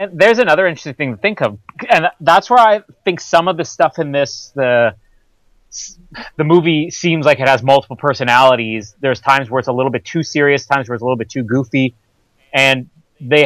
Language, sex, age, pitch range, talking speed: English, male, 30-49, 115-145 Hz, 205 wpm